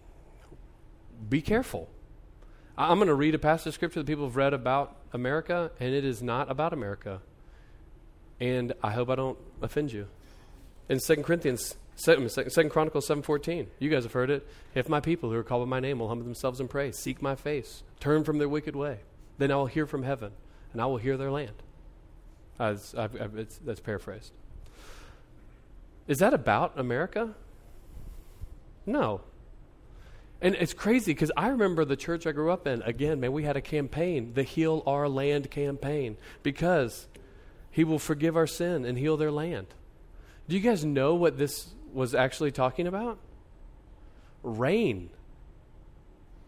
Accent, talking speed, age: American, 170 wpm, 40-59